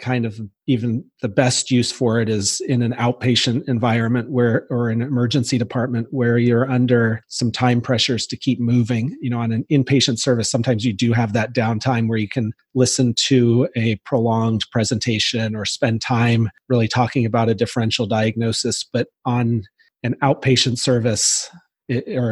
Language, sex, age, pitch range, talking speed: English, male, 40-59, 115-130 Hz, 165 wpm